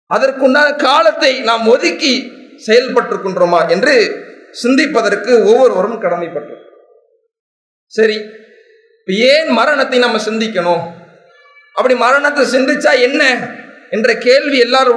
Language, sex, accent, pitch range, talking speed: English, male, Indian, 230-295 Hz, 145 wpm